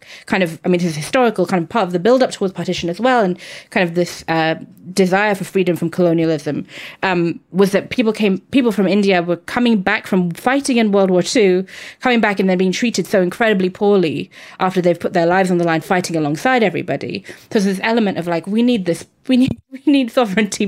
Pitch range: 170-215 Hz